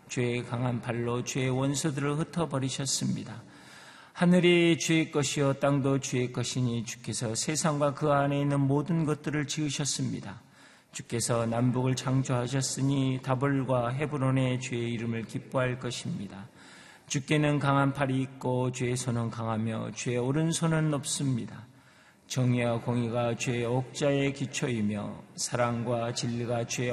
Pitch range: 115-140 Hz